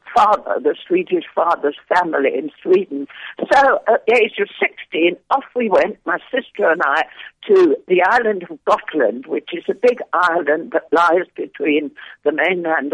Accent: British